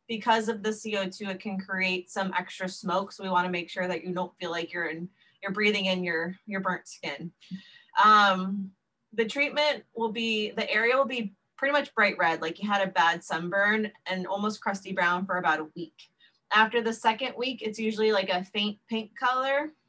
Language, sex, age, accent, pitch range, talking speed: English, female, 20-39, American, 185-230 Hz, 205 wpm